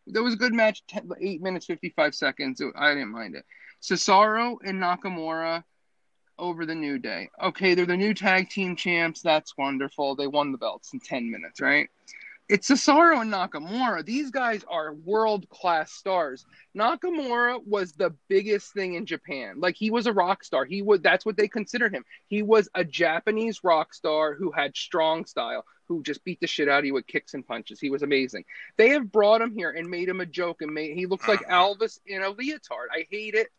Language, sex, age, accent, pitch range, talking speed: English, male, 30-49, American, 165-215 Hz, 200 wpm